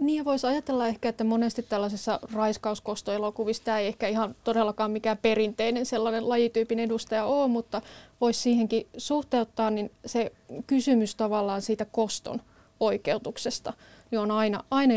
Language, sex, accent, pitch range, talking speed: Finnish, female, native, 210-240 Hz, 130 wpm